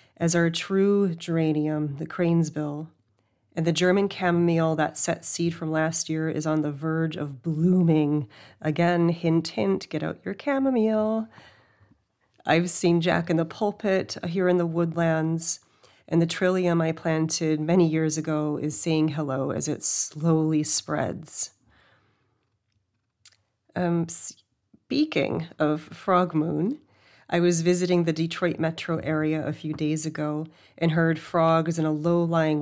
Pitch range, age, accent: 150-170 Hz, 30-49, American